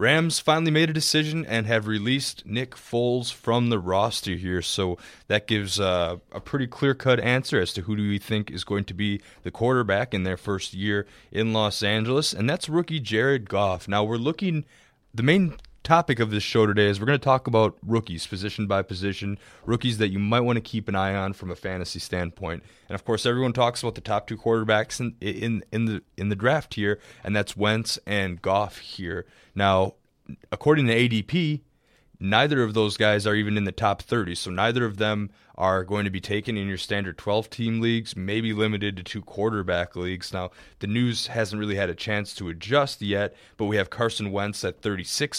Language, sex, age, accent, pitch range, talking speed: English, male, 20-39, American, 100-120 Hz, 205 wpm